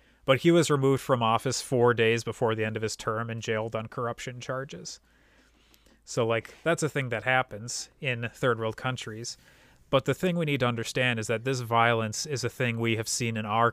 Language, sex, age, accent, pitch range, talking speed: English, male, 30-49, American, 110-130 Hz, 215 wpm